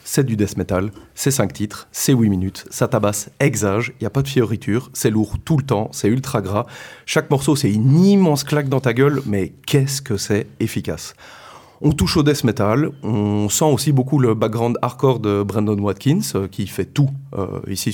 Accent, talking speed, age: French, 205 wpm, 30-49